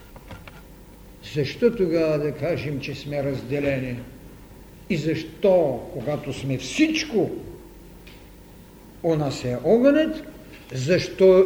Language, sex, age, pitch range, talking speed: Bulgarian, male, 60-79, 135-205 Hz, 90 wpm